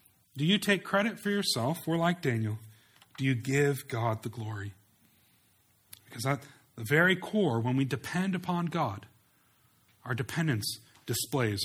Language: English